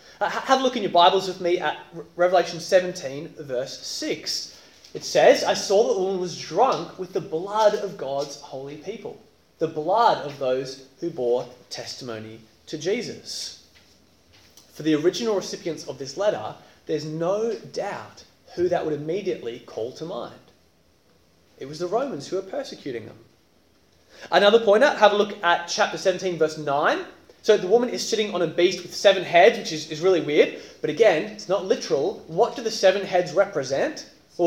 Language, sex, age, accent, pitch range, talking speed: English, male, 20-39, Australian, 140-200 Hz, 175 wpm